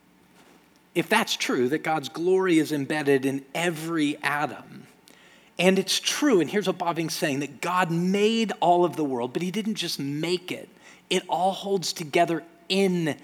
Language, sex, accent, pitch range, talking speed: English, male, American, 145-185 Hz, 170 wpm